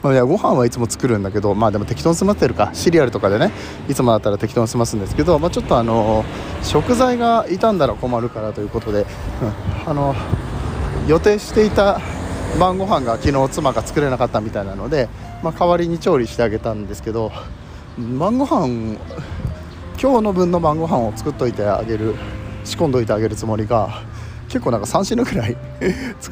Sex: male